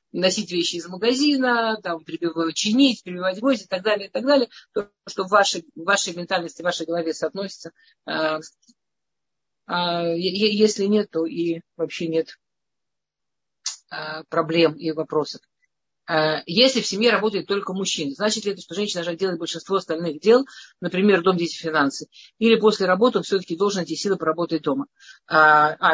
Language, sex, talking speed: Russian, female, 150 wpm